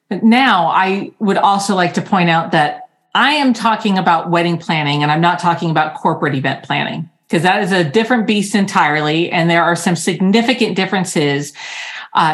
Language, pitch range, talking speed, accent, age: English, 170-230 Hz, 180 wpm, American, 40-59